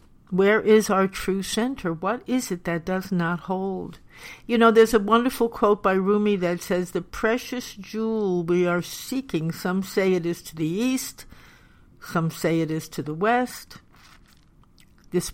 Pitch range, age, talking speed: 175-220 Hz, 60-79, 170 wpm